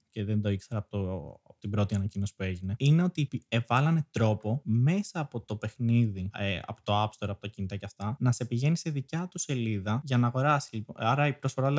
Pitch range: 110-150 Hz